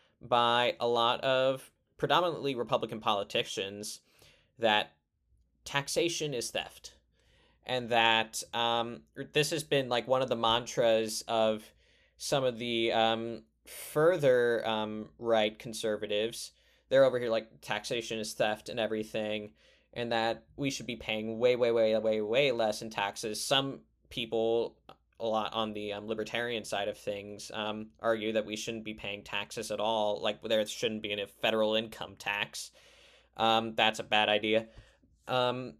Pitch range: 110-120 Hz